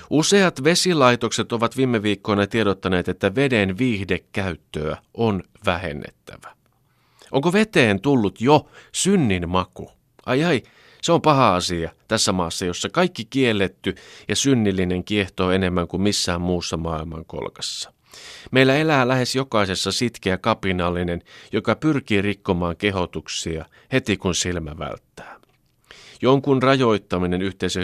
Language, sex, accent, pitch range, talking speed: Finnish, male, native, 85-120 Hz, 115 wpm